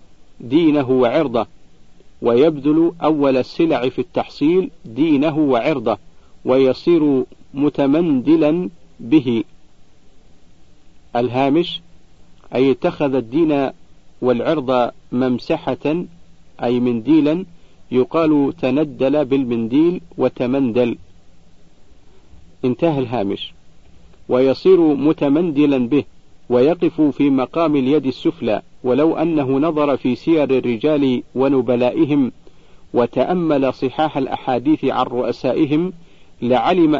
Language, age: Arabic, 50-69